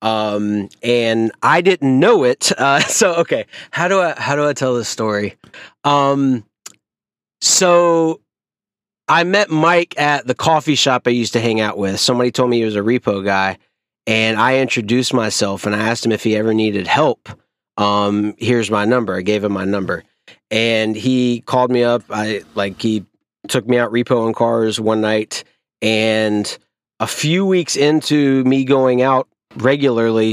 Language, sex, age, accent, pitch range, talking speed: English, male, 30-49, American, 110-140 Hz, 170 wpm